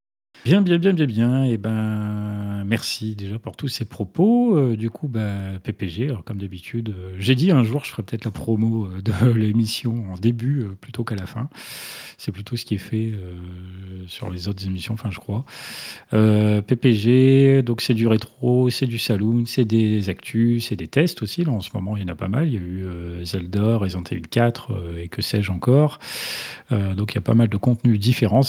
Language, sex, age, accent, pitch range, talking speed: French, male, 40-59, French, 100-125 Hz, 220 wpm